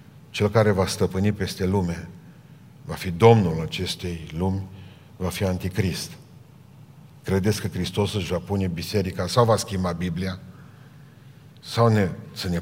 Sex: male